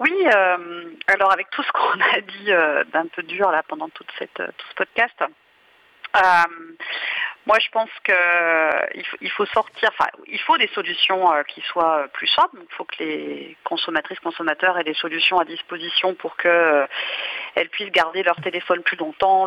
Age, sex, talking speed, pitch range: 40-59, female, 180 wpm, 165-200 Hz